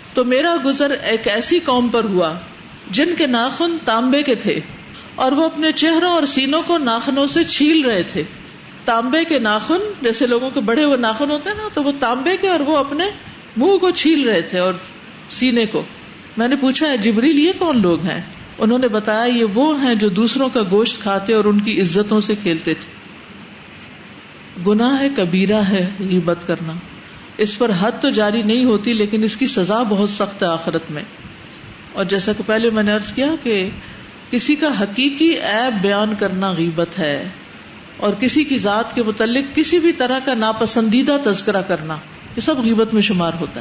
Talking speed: 175 wpm